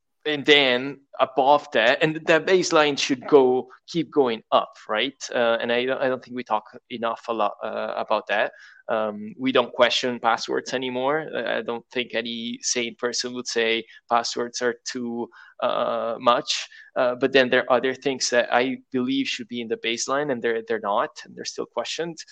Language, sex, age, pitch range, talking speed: English, male, 20-39, 120-150 Hz, 190 wpm